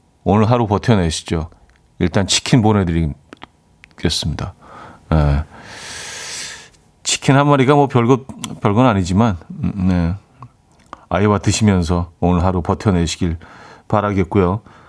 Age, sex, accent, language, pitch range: 40-59, male, native, Korean, 85-130 Hz